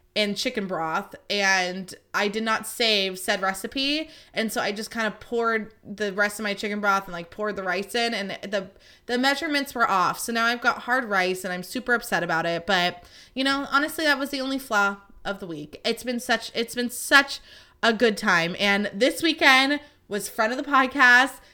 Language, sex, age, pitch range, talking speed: English, female, 20-39, 200-245 Hz, 210 wpm